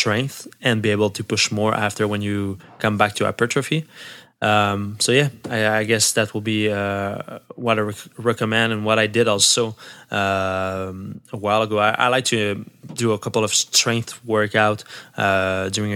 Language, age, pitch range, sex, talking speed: English, 20-39, 105-130 Hz, male, 190 wpm